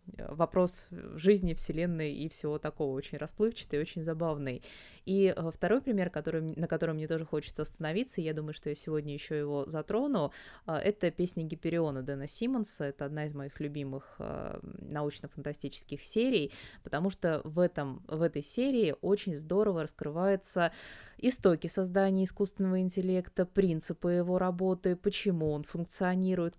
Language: Russian